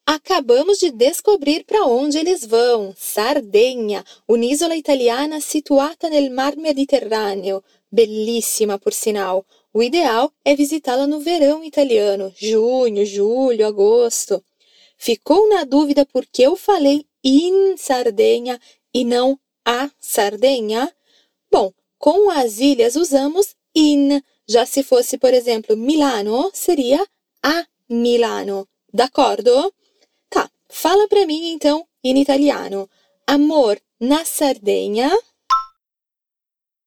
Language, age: Portuguese, 20-39